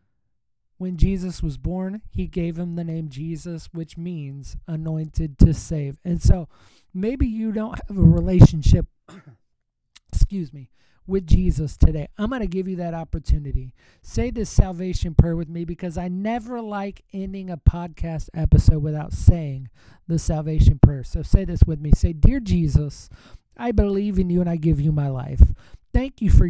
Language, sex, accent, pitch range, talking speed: English, male, American, 145-190 Hz, 170 wpm